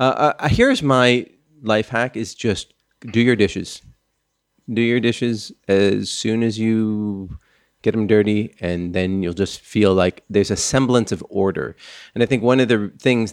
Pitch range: 100-130 Hz